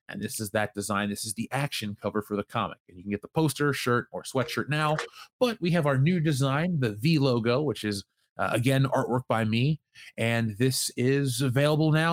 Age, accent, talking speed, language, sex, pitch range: 30-49, American, 220 wpm, English, male, 115-145 Hz